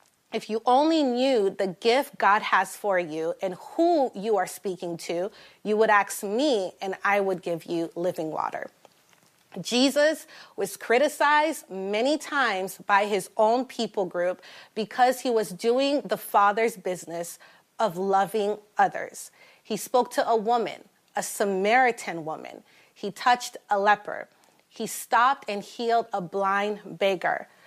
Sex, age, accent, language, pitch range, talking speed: female, 30-49, American, English, 195-245 Hz, 145 wpm